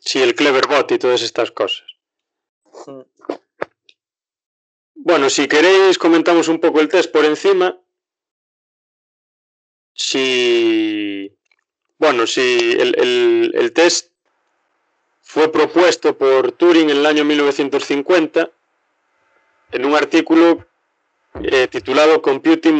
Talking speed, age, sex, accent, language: 105 wpm, 30-49, male, Spanish, Spanish